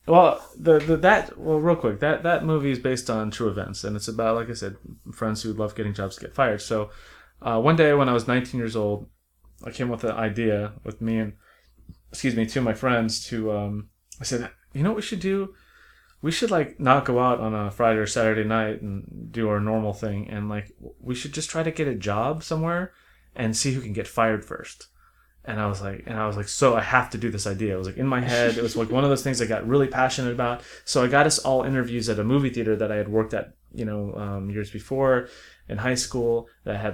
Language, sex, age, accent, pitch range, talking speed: English, male, 20-39, American, 105-130 Hz, 255 wpm